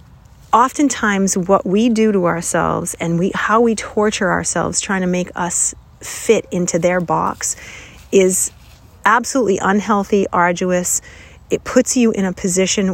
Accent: American